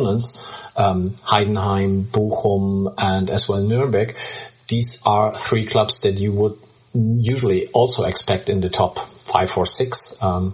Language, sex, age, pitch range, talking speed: English, male, 40-59, 100-130 Hz, 135 wpm